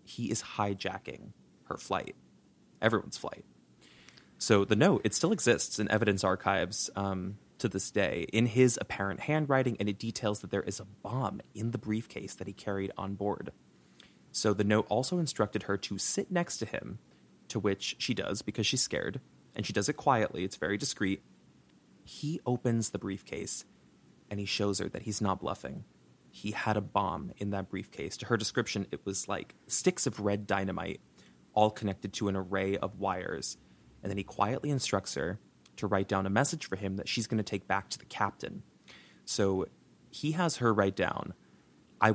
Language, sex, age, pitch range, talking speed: English, male, 20-39, 95-115 Hz, 185 wpm